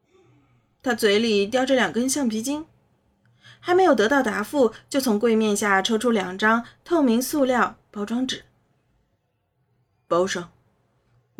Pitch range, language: 190-280 Hz, Chinese